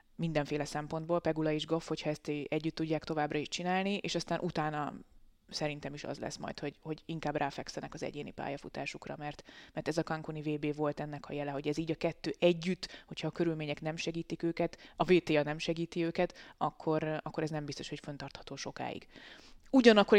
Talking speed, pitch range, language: 185 wpm, 150-170 Hz, Hungarian